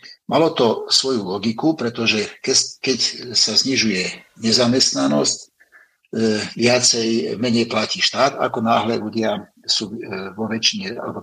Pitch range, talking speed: 115-135 Hz, 105 wpm